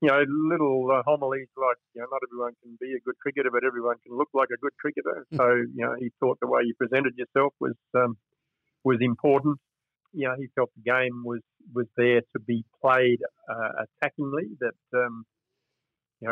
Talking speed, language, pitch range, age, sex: 195 wpm, English, 120-135 Hz, 50-69, male